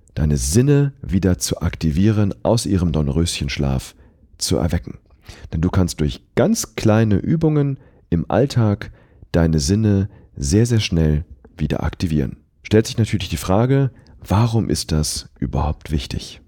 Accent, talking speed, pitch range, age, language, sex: German, 130 wpm, 90-125 Hz, 40-59, German, male